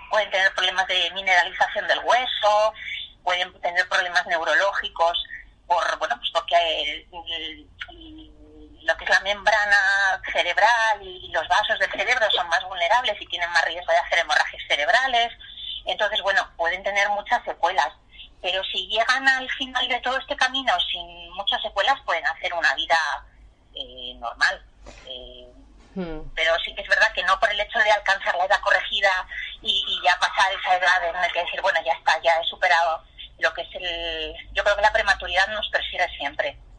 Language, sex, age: Spanish, female, 30-49